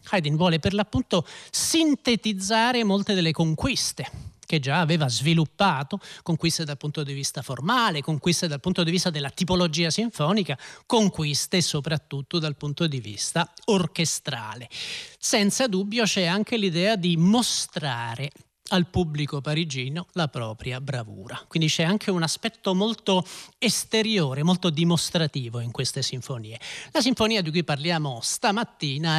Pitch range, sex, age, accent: 145-195 Hz, male, 40-59, native